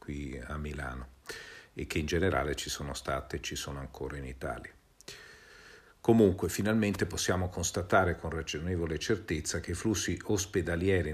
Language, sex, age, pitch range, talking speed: Italian, male, 50-69, 75-90 Hz, 145 wpm